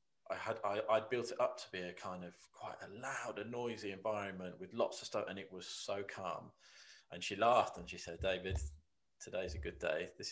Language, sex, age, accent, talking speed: English, male, 20-39, British, 225 wpm